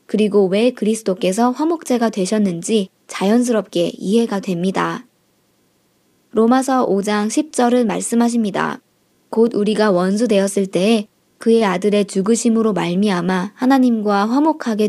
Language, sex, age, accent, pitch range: Korean, male, 20-39, native, 195-245 Hz